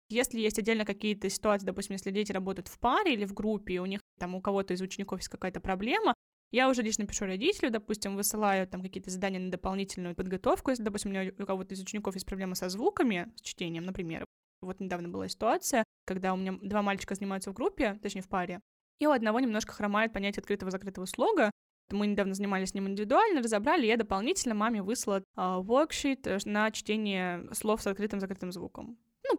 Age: 10-29